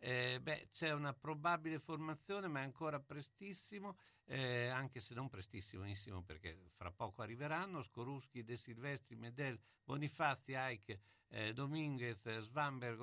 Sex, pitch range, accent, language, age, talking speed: male, 100-135 Hz, native, Italian, 60-79, 130 wpm